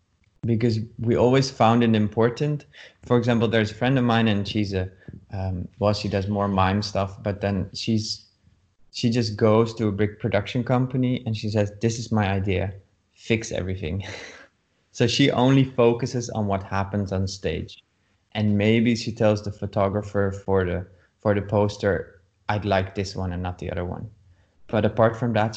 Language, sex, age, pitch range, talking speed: English, male, 20-39, 100-110 Hz, 180 wpm